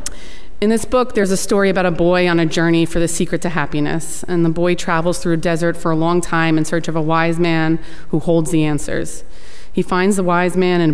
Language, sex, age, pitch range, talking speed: English, female, 30-49, 160-185 Hz, 245 wpm